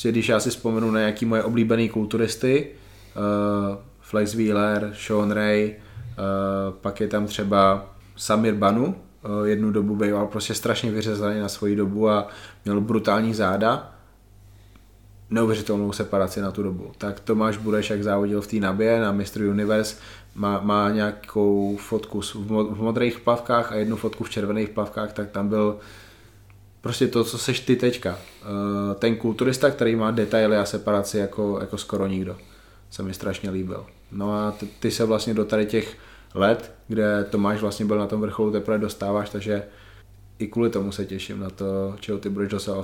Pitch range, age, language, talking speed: 100-110 Hz, 20-39, Czech, 165 wpm